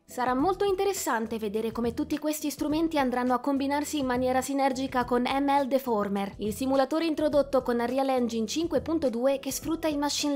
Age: 20-39